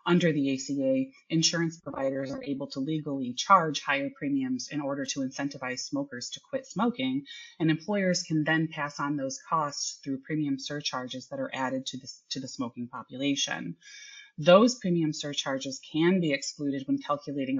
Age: 30-49